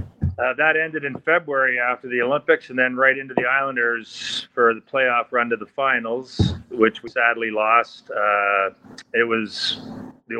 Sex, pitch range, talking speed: male, 110-130 Hz, 165 wpm